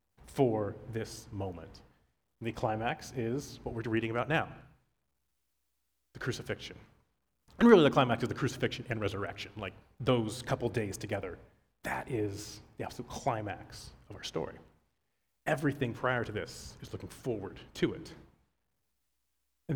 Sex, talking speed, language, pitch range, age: male, 135 wpm, English, 95-135 Hz, 30-49